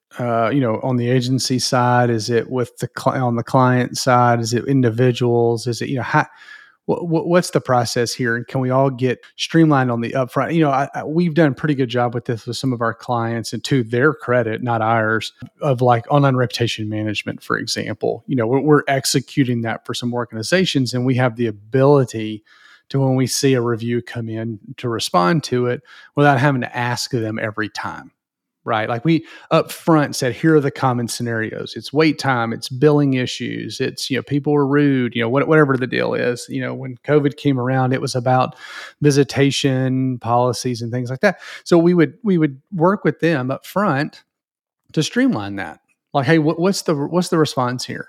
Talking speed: 205 wpm